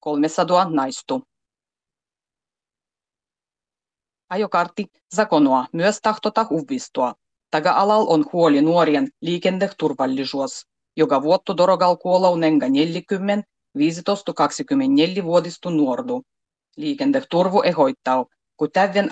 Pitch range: 145-200 Hz